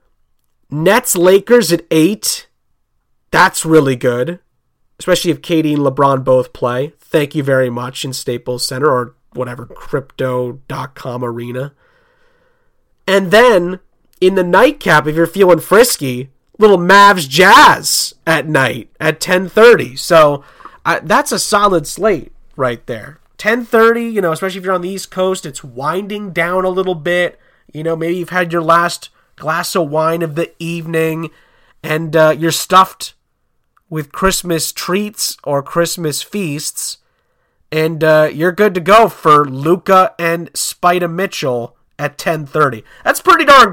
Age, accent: 30-49, American